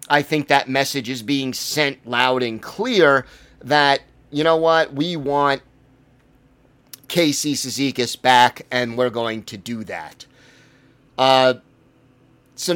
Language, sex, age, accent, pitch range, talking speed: English, male, 30-49, American, 125-145 Hz, 125 wpm